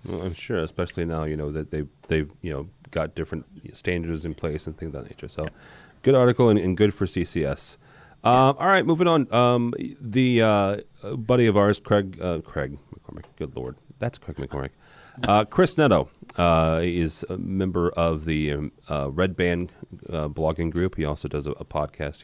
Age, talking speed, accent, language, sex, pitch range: 30-49, 195 wpm, American, English, male, 80-115 Hz